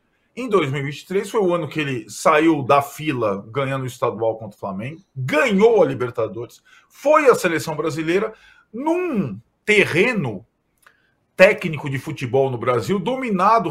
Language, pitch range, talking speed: Portuguese, 135-205 Hz, 135 wpm